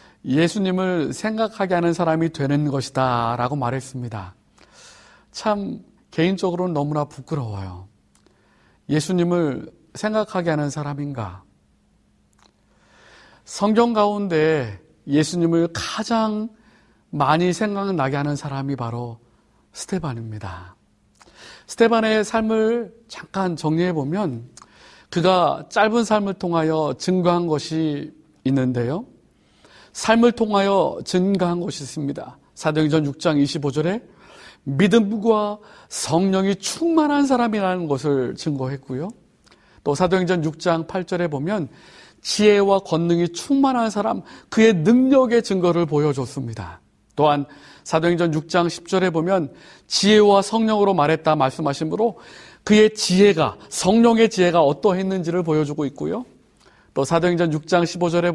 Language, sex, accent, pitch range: Korean, male, native, 145-205 Hz